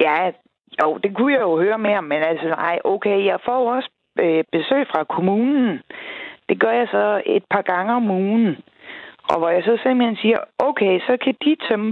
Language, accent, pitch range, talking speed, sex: Danish, native, 175-255 Hz, 195 wpm, female